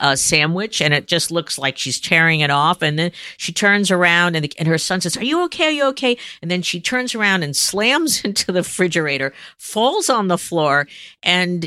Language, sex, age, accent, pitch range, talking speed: English, female, 50-69, American, 170-250 Hz, 220 wpm